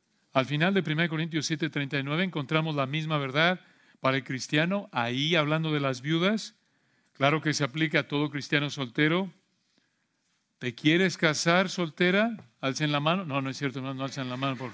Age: 40-59